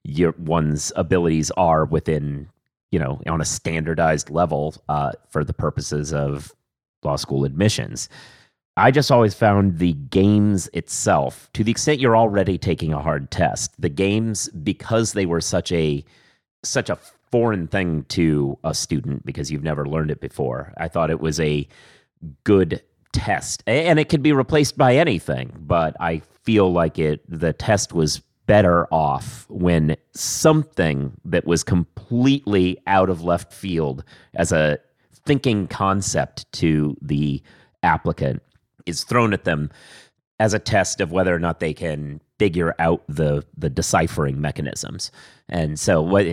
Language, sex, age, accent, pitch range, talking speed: English, male, 30-49, American, 75-105 Hz, 150 wpm